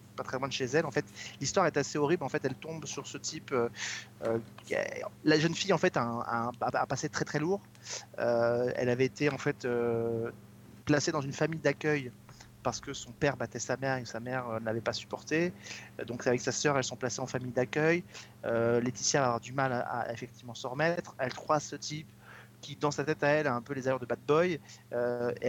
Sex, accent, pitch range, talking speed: male, French, 120-150 Hz, 235 wpm